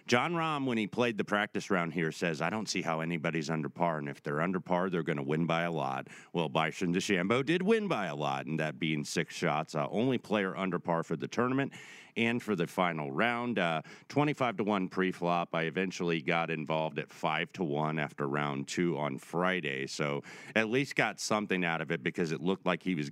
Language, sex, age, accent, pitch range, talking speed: English, male, 40-59, American, 80-120 Hz, 225 wpm